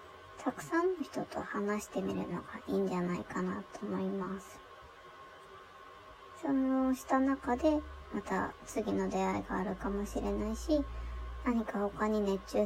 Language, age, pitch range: Japanese, 20-39, 200-275 Hz